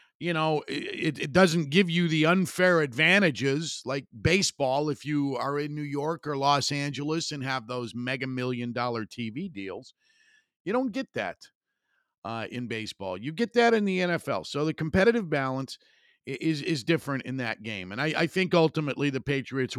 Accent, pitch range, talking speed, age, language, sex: American, 115-165 Hz, 180 wpm, 50-69, English, male